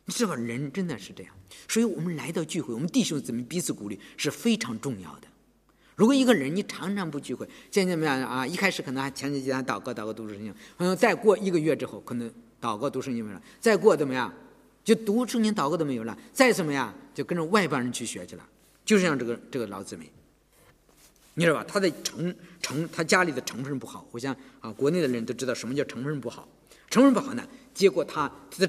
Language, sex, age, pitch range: English, male, 50-69, 130-210 Hz